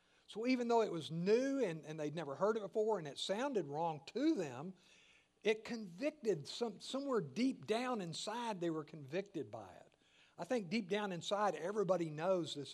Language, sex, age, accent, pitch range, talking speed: English, male, 60-79, American, 150-210 Hz, 180 wpm